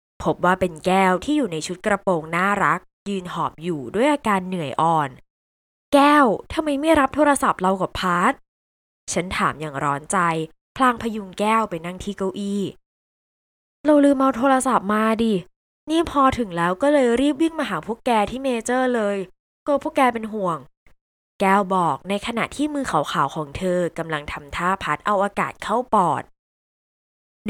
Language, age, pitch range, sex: Thai, 20-39, 170-230 Hz, female